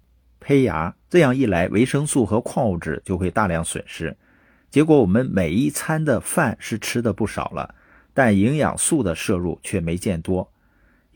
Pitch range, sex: 95-125 Hz, male